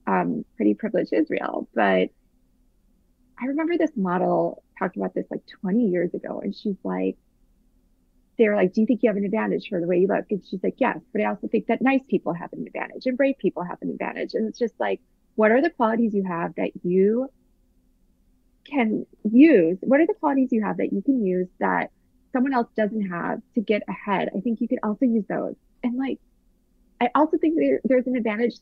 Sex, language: female, English